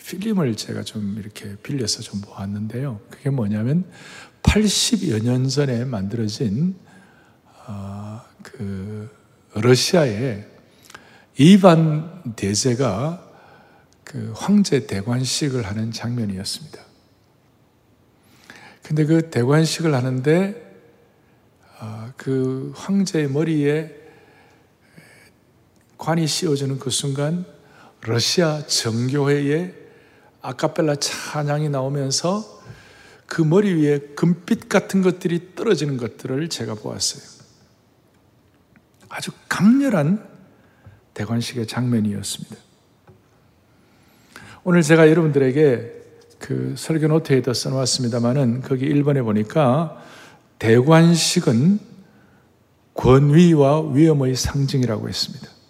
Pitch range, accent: 115-160 Hz, native